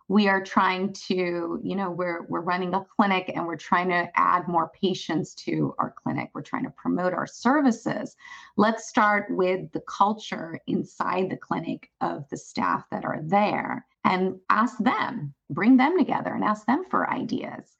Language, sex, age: English, female, 30-49